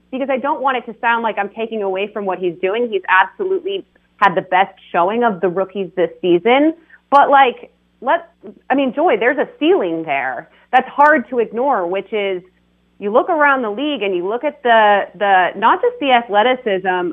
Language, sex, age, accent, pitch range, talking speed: English, female, 30-49, American, 190-245 Hz, 200 wpm